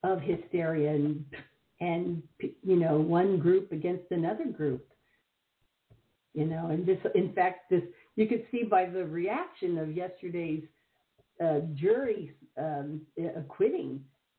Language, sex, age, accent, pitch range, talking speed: English, female, 60-79, American, 160-235 Hz, 125 wpm